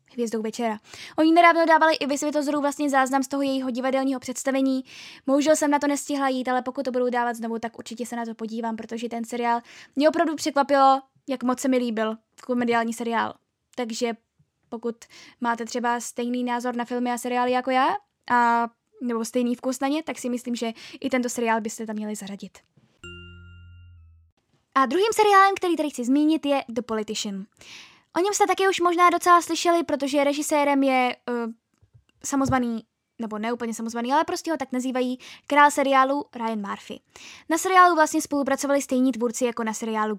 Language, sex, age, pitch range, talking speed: Czech, female, 10-29, 235-290 Hz, 175 wpm